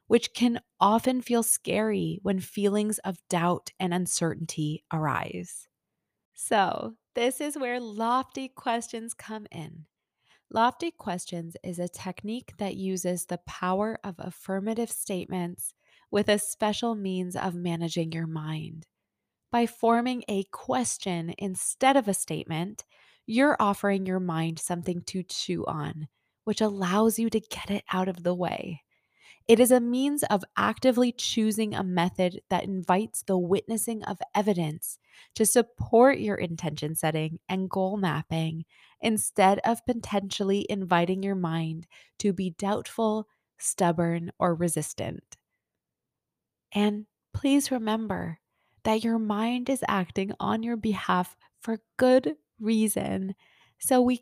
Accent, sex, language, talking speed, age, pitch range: American, female, English, 130 wpm, 20-39, 175-225 Hz